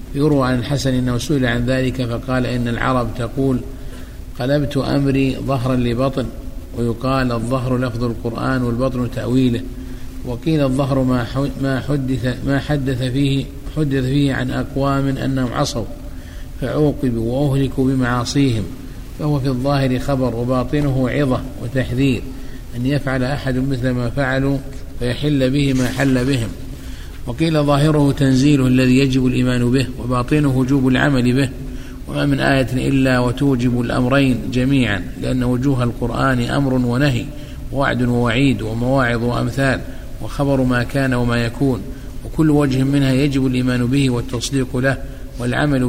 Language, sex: Arabic, male